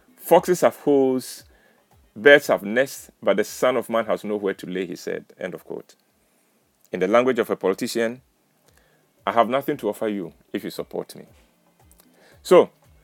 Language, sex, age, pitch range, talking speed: English, male, 40-59, 105-150 Hz, 170 wpm